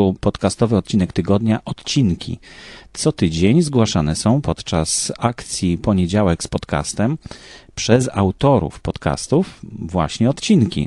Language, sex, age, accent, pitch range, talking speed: Polish, male, 30-49, native, 90-115 Hz, 100 wpm